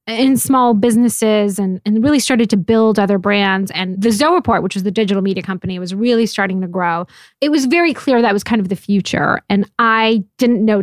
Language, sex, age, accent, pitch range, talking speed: English, female, 10-29, American, 195-230 Hz, 220 wpm